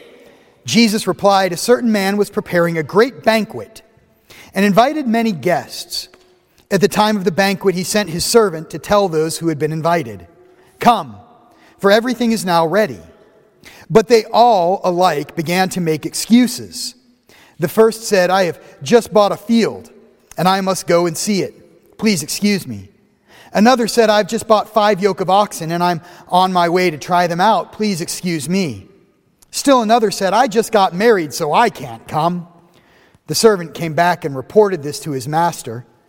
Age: 40-59